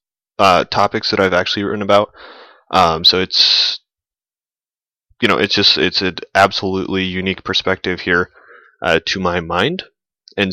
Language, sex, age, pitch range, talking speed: English, male, 20-39, 95-115 Hz, 140 wpm